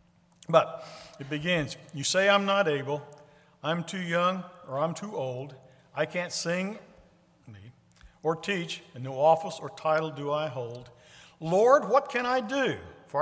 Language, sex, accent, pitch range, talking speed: English, male, American, 130-180 Hz, 155 wpm